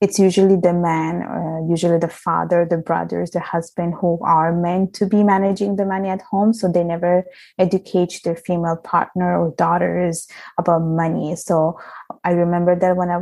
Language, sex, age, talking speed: English, female, 20-39, 175 wpm